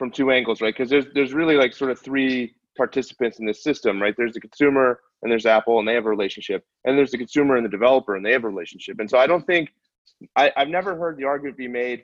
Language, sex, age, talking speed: English, male, 30-49, 265 wpm